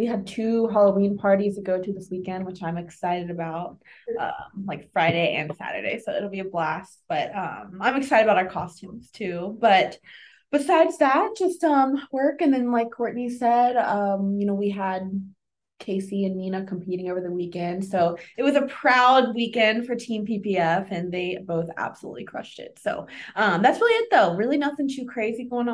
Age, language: 20-39, English